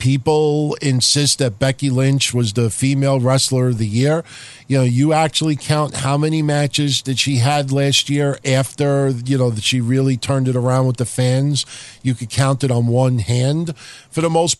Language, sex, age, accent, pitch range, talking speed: English, male, 50-69, American, 125-150 Hz, 195 wpm